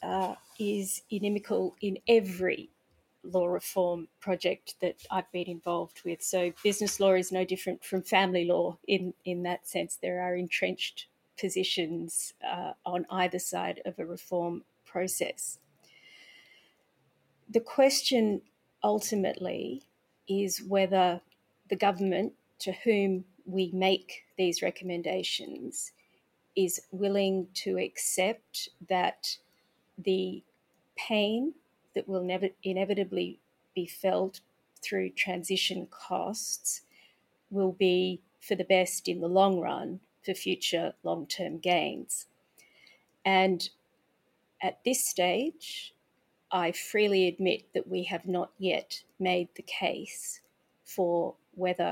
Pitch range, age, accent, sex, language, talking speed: 180-195 Hz, 40-59, Australian, female, English, 110 wpm